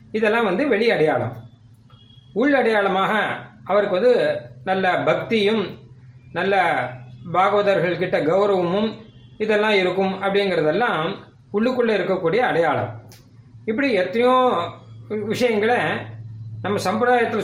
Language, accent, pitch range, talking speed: Tamil, native, 130-215 Hz, 80 wpm